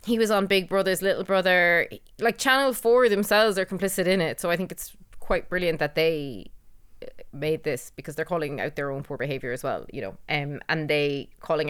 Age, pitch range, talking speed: 20-39, 150-180 Hz, 210 wpm